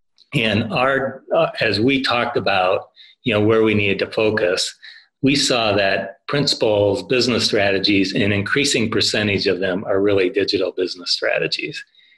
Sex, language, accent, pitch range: male, English, American, 100-115 Hz